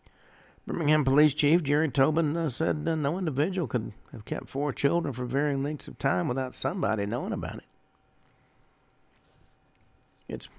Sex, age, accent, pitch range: male, 60-79, American, 115-140 Hz